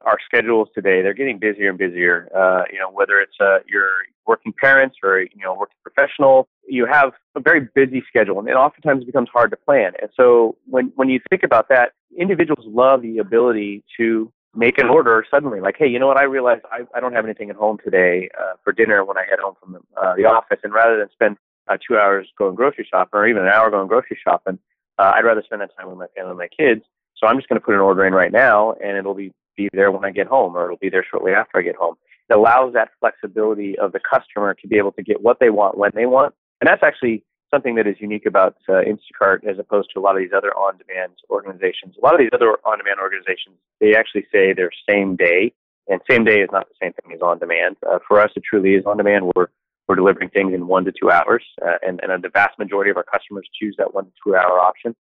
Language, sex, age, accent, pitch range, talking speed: English, male, 30-49, American, 100-140 Hz, 250 wpm